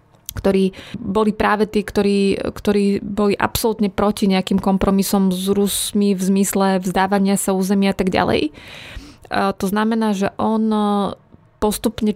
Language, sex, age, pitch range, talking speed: Slovak, female, 20-39, 195-210 Hz, 130 wpm